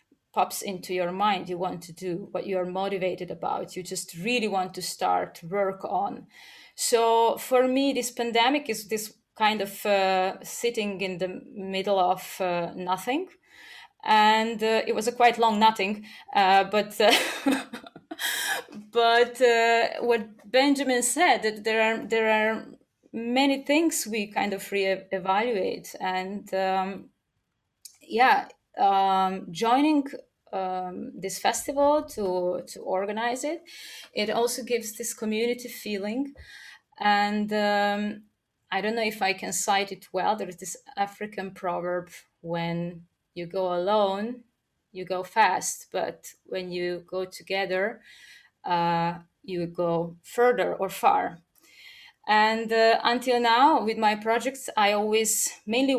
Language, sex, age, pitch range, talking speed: English, female, 20-39, 190-235 Hz, 135 wpm